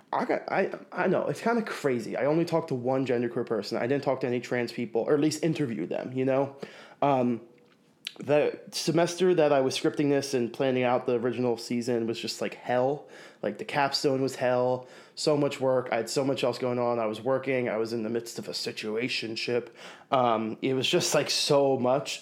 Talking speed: 220 wpm